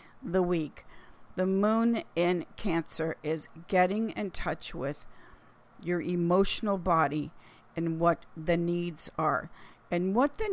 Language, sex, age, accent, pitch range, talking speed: English, female, 50-69, American, 170-220 Hz, 125 wpm